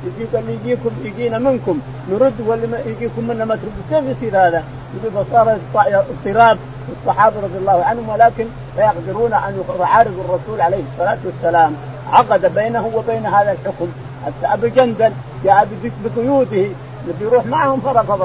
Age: 50-69